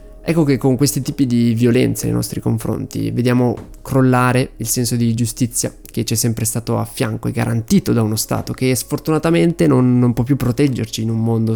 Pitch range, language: 110-135 Hz, Italian